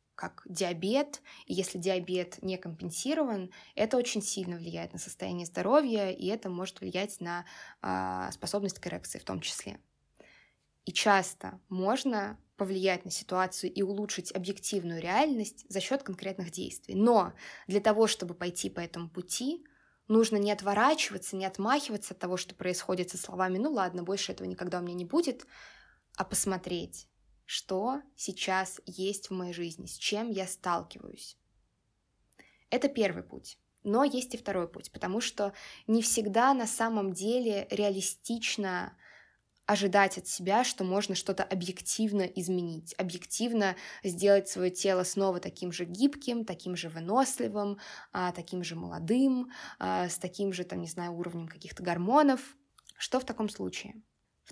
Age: 20-39